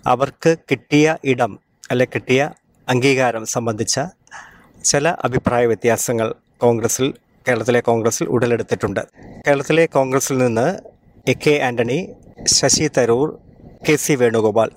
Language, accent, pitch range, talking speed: Malayalam, native, 115-140 Hz, 100 wpm